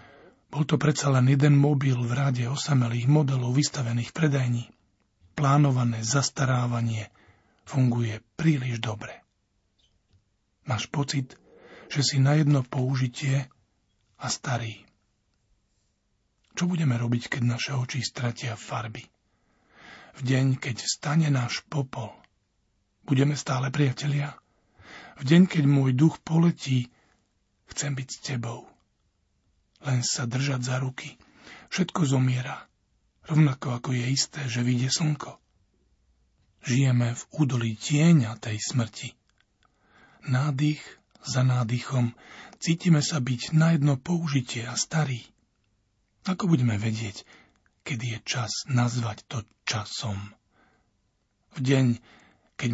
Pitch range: 115-145 Hz